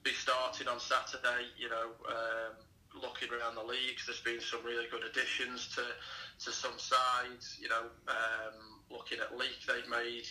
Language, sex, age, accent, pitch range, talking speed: English, male, 20-39, British, 115-135 Hz, 170 wpm